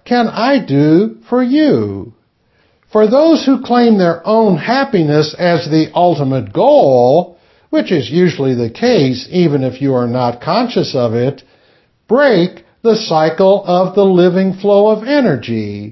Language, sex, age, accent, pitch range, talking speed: English, male, 60-79, American, 145-225 Hz, 145 wpm